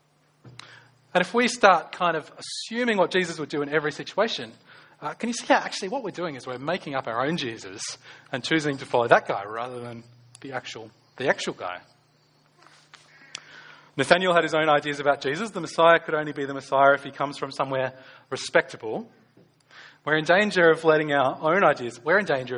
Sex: male